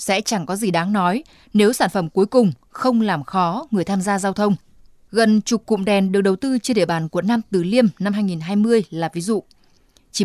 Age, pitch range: 20-39, 185-235 Hz